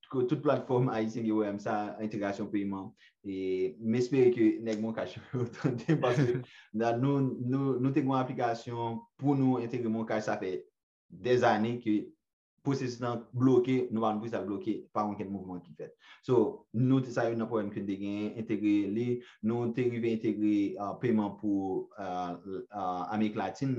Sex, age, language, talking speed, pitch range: male, 30-49, French, 165 wpm, 100-125 Hz